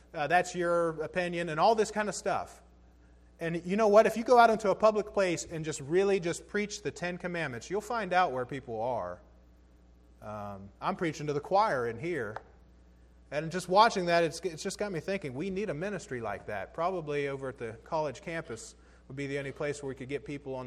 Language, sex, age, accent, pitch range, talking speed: English, male, 30-49, American, 115-180 Hz, 225 wpm